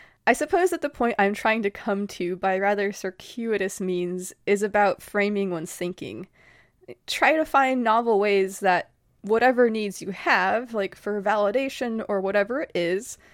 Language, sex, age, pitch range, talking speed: English, female, 20-39, 185-220 Hz, 160 wpm